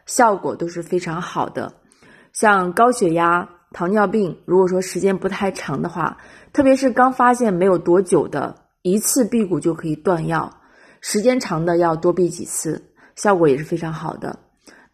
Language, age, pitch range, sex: Chinese, 20-39, 165-200 Hz, female